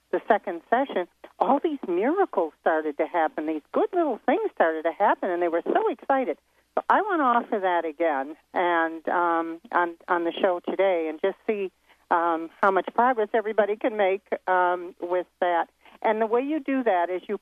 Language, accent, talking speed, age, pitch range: English, American, 195 wpm, 50-69, 170-225 Hz